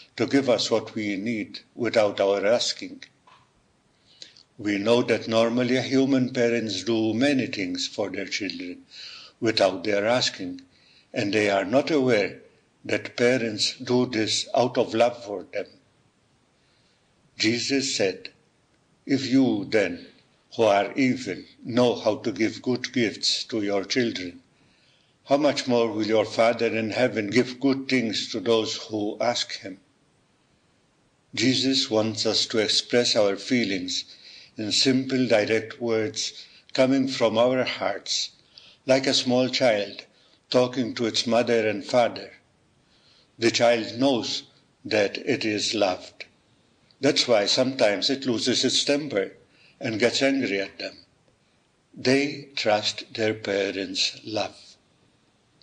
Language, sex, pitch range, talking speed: English, male, 110-130 Hz, 130 wpm